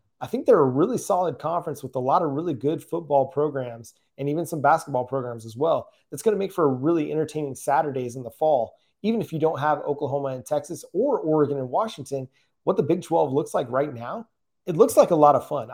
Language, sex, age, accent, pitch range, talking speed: English, male, 30-49, American, 130-160 Hz, 235 wpm